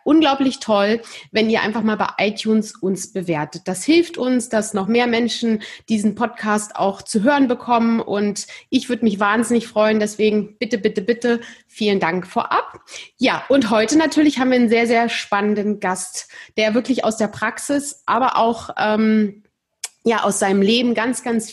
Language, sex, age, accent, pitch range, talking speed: German, female, 30-49, German, 215-255 Hz, 170 wpm